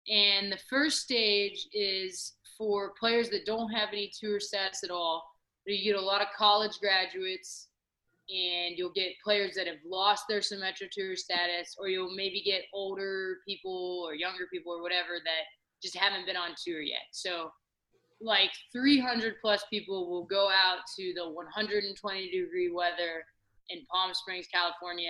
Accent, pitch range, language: American, 180-220 Hz, English